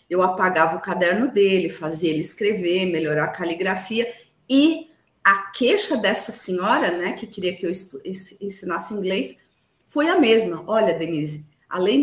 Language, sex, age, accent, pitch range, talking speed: Portuguese, female, 40-59, Brazilian, 195-275 Hz, 145 wpm